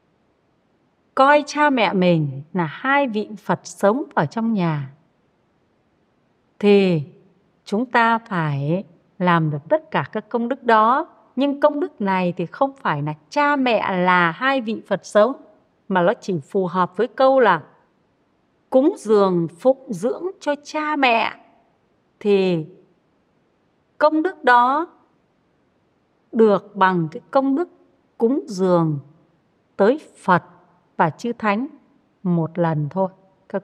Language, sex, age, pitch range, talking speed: Vietnamese, female, 30-49, 180-270 Hz, 130 wpm